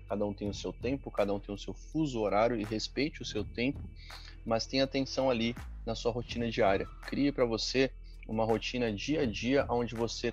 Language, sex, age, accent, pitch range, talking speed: Portuguese, male, 20-39, Brazilian, 100-130 Hz, 210 wpm